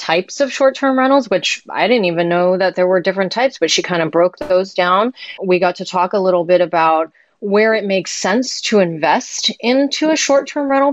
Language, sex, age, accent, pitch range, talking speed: English, female, 30-49, American, 170-220 Hz, 215 wpm